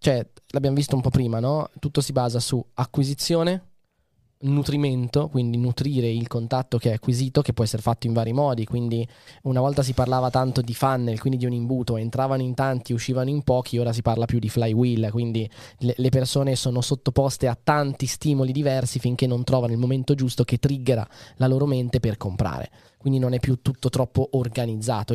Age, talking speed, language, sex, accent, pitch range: 20-39, 190 wpm, Italian, male, native, 120-145 Hz